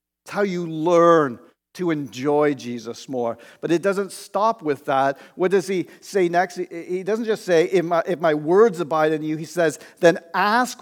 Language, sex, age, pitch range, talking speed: English, male, 50-69, 150-185 Hz, 190 wpm